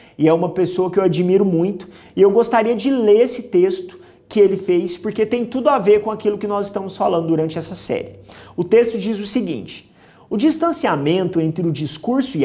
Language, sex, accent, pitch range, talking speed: Portuguese, male, Brazilian, 160-230 Hz, 205 wpm